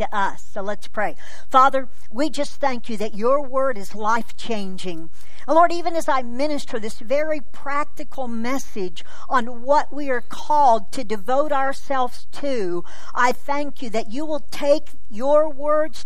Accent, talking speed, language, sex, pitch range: American, 160 wpm, English, female, 230-310 Hz